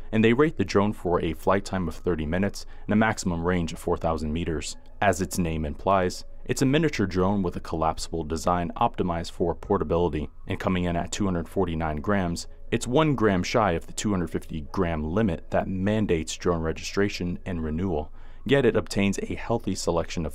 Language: English